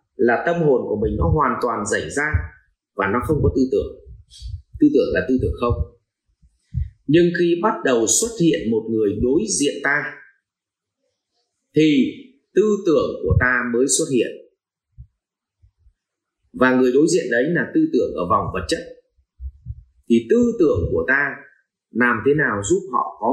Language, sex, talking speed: Vietnamese, male, 165 wpm